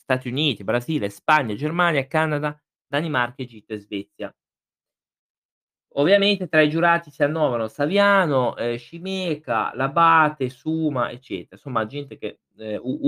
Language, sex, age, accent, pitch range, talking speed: Italian, male, 20-39, native, 115-160 Hz, 120 wpm